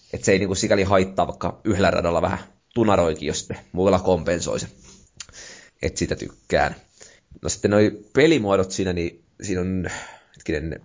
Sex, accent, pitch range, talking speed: male, native, 90-105 Hz, 135 wpm